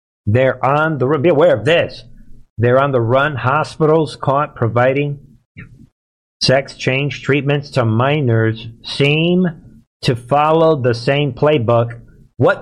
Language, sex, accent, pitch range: English, male, American, 120-150 Hz